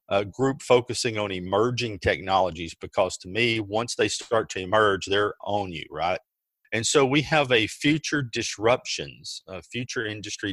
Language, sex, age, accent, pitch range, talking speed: English, male, 40-59, American, 95-115 Hz, 160 wpm